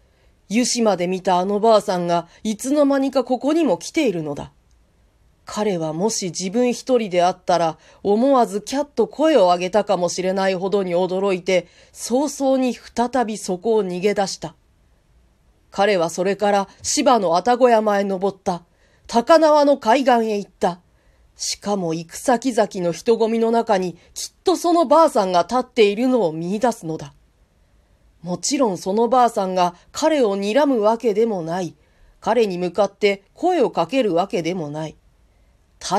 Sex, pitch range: female, 175-235 Hz